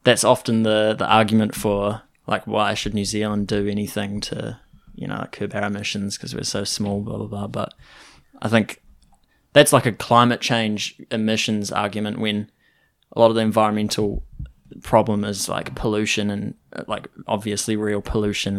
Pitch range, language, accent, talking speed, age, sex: 105-110 Hz, English, Australian, 165 wpm, 10-29, male